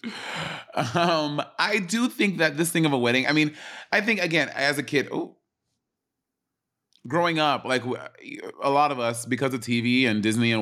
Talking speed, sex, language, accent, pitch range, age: 180 wpm, male, English, American, 120-160 Hz, 30-49